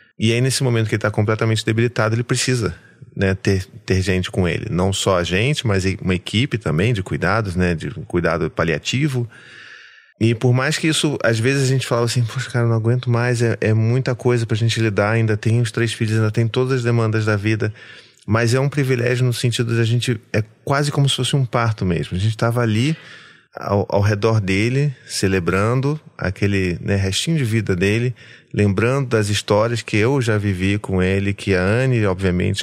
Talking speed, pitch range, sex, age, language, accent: 205 wpm, 100-120 Hz, male, 30-49, Portuguese, Brazilian